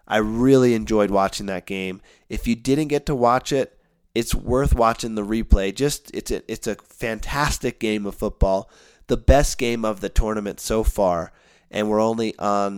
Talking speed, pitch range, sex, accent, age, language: 185 wpm, 105-125 Hz, male, American, 30-49, English